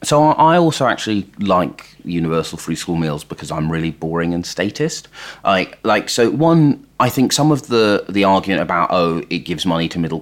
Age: 30-49